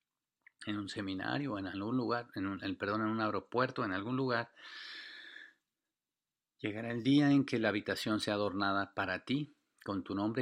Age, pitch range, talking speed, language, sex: 40-59, 95-120 Hz, 180 wpm, English, male